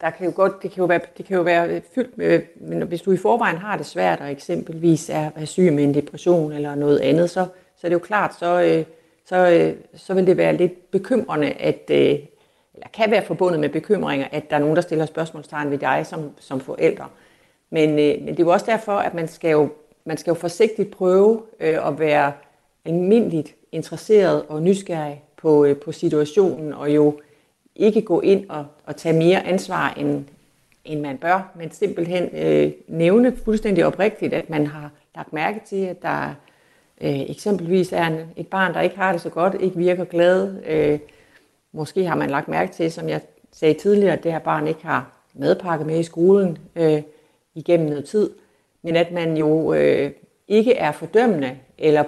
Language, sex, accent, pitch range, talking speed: Danish, female, native, 150-185 Hz, 180 wpm